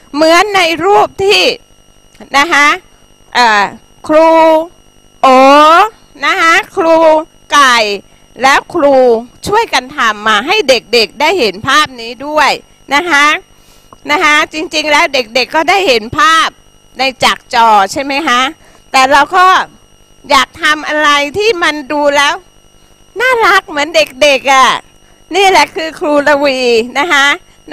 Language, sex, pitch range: Thai, female, 265-335 Hz